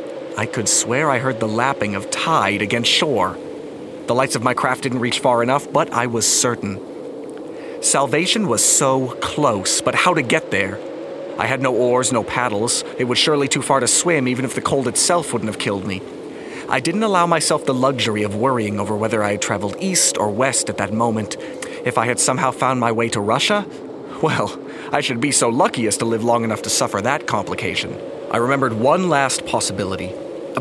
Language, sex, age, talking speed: English, male, 40-59, 205 wpm